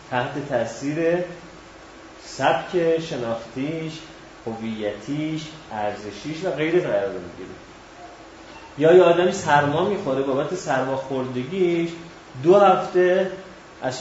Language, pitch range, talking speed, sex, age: Persian, 110-155 Hz, 90 wpm, male, 30-49